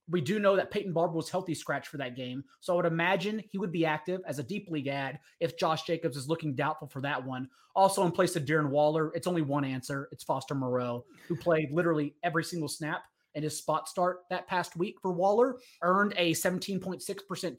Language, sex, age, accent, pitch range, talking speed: English, male, 30-49, American, 155-190 Hz, 220 wpm